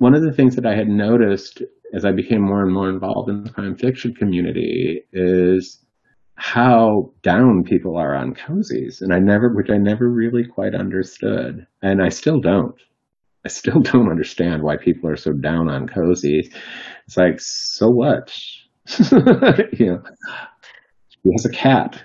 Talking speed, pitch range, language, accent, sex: 165 wpm, 95-120 Hz, English, American, male